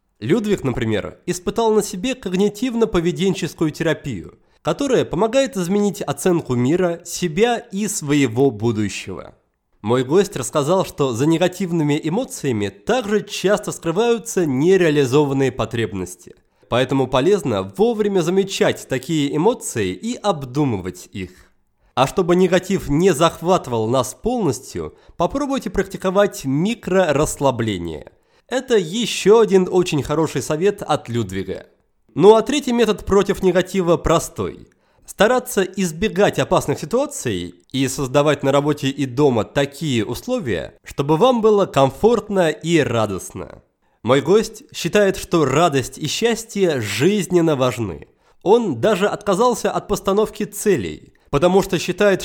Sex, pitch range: male, 135-205 Hz